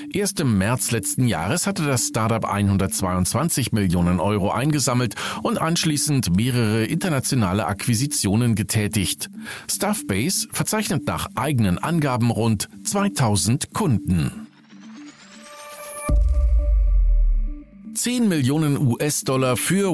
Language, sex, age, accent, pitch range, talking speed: German, male, 40-59, German, 110-170 Hz, 90 wpm